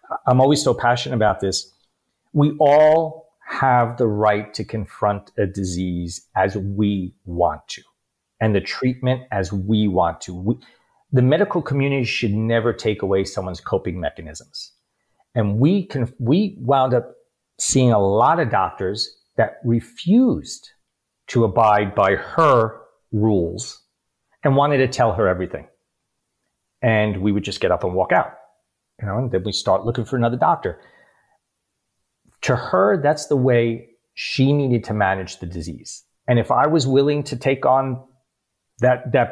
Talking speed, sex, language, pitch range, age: 155 wpm, male, English, 105-130 Hz, 40-59